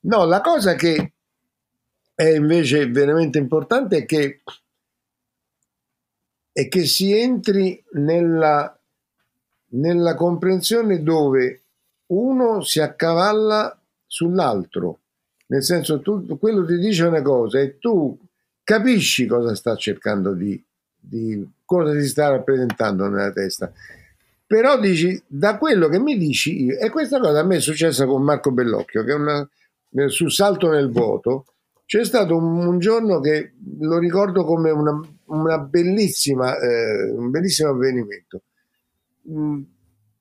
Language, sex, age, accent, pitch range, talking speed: Italian, male, 50-69, native, 125-180 Hz, 130 wpm